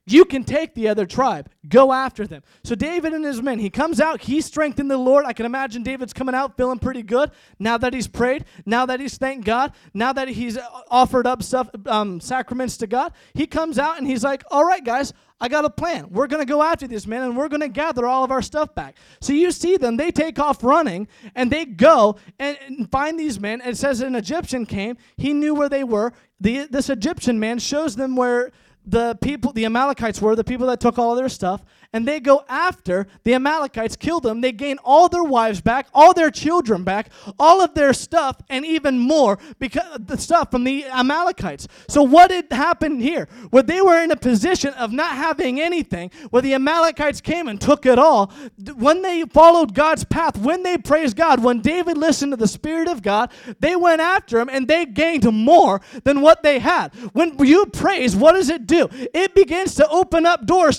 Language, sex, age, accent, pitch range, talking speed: English, male, 20-39, American, 245-310 Hz, 215 wpm